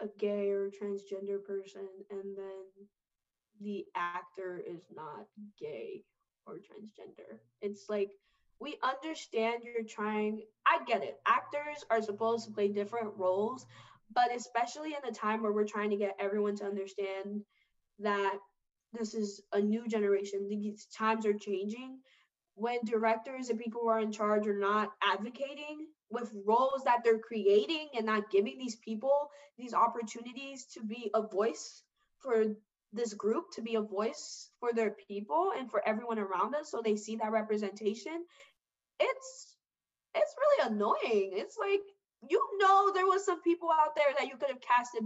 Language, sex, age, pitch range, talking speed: English, female, 10-29, 205-265 Hz, 160 wpm